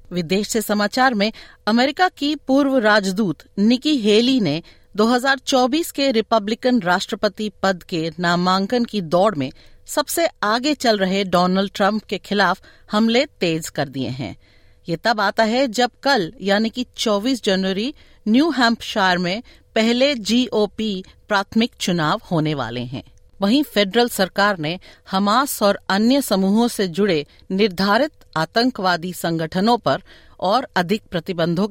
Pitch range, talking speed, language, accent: 175-230 Hz, 135 wpm, Hindi, native